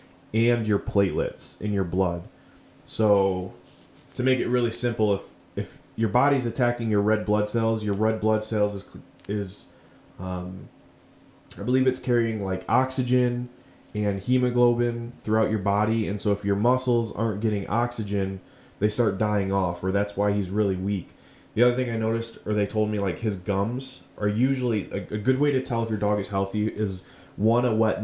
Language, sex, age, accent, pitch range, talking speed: English, male, 20-39, American, 100-120 Hz, 185 wpm